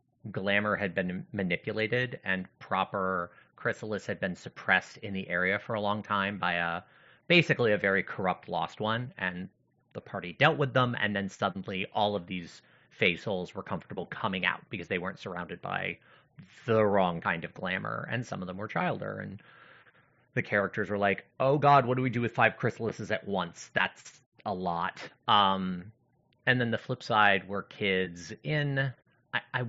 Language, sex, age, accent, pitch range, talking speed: English, male, 30-49, American, 95-120 Hz, 180 wpm